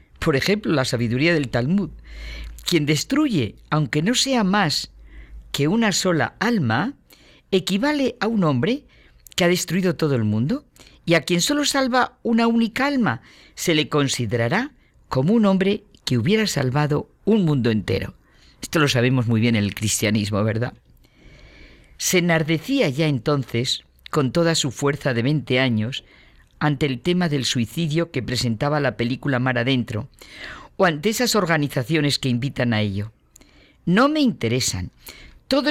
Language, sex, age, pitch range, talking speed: Spanish, female, 50-69, 125-200 Hz, 150 wpm